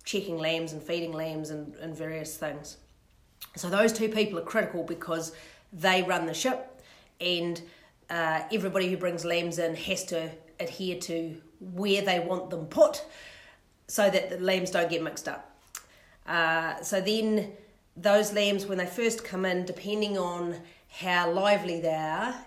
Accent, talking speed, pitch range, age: Australian, 160 wpm, 165-195 Hz, 40-59